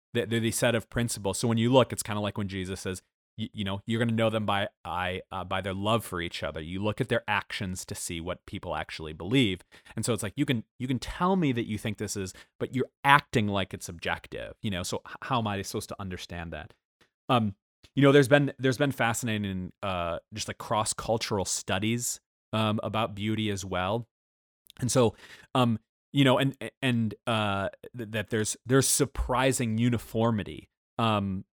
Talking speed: 205 wpm